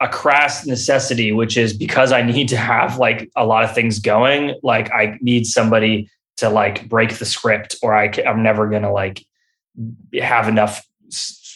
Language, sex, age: English, male, 20-39